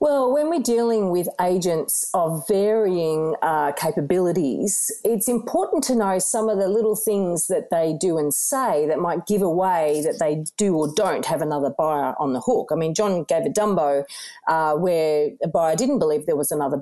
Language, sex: English, female